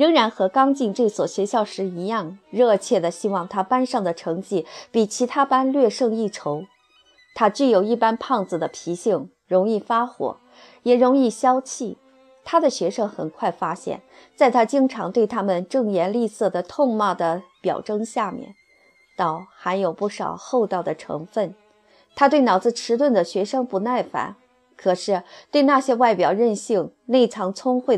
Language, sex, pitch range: Chinese, female, 185-245 Hz